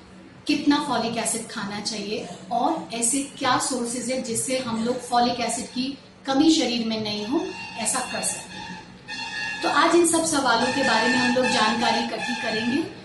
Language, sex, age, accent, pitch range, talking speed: Hindi, female, 40-59, native, 230-280 Hz, 170 wpm